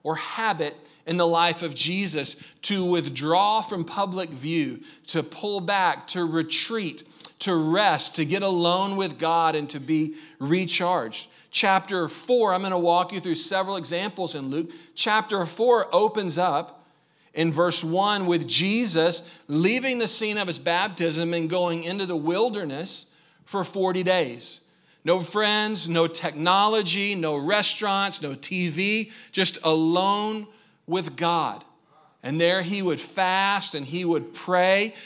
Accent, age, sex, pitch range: American, 40-59, male, 165-195 Hz